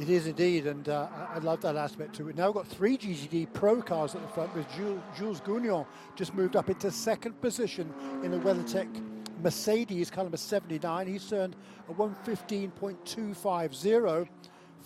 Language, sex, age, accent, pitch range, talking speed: English, male, 50-69, British, 165-205 Hz, 165 wpm